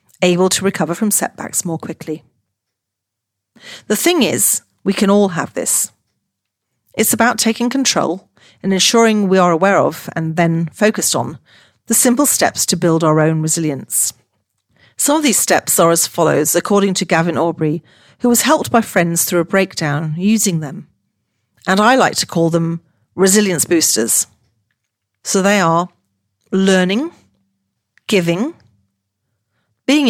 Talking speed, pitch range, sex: 145 wpm, 120-200 Hz, female